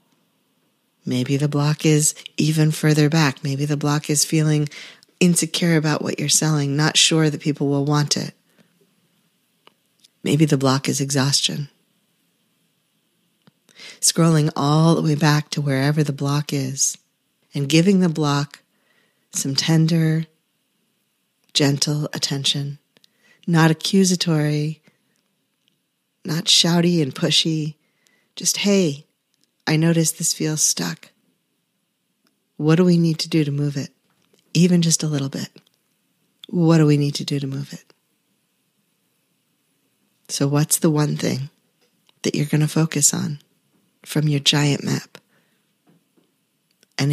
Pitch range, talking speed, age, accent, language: 145-165 Hz, 125 wpm, 40-59, American, English